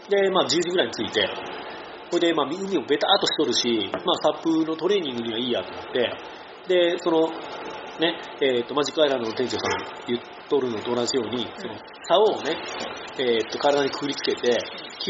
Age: 40-59